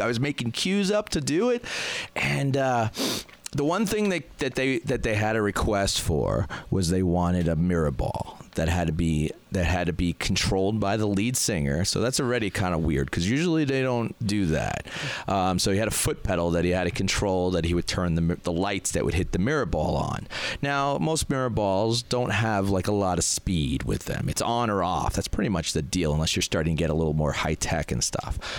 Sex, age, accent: male, 30-49, American